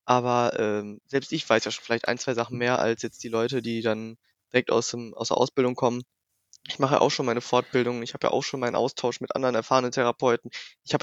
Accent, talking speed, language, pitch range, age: German, 240 wpm, German, 115-140 Hz, 20-39